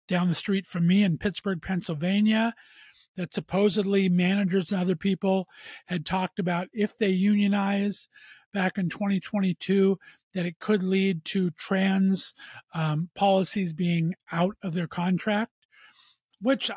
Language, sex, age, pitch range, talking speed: English, male, 40-59, 180-225 Hz, 130 wpm